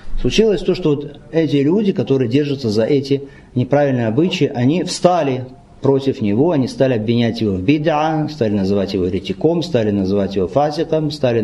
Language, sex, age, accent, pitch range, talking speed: Russian, male, 50-69, native, 130-165 Hz, 165 wpm